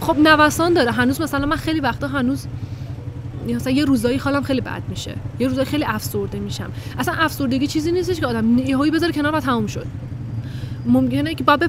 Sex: female